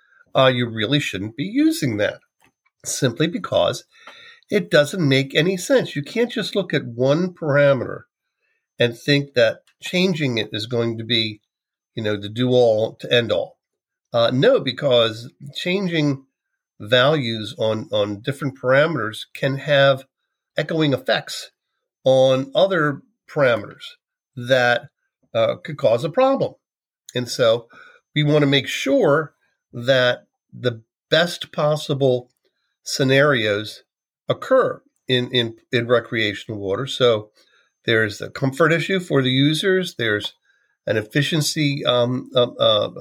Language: English